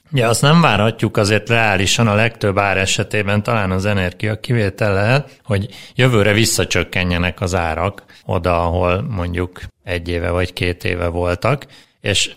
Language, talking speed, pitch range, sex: Hungarian, 145 wpm, 95-115 Hz, male